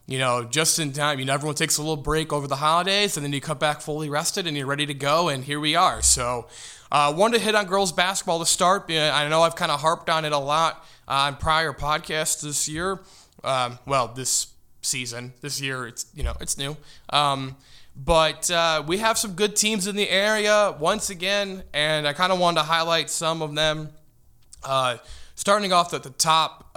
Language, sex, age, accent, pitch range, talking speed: English, male, 20-39, American, 130-160 Hz, 215 wpm